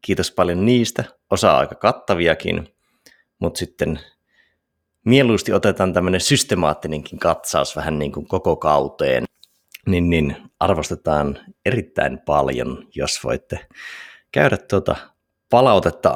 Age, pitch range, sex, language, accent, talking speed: 30-49, 75-100 Hz, male, Finnish, native, 110 wpm